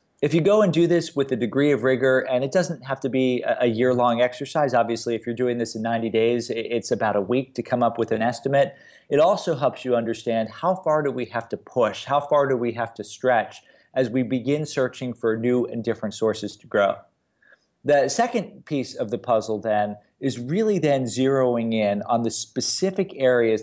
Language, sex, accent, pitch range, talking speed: English, male, American, 115-140 Hz, 215 wpm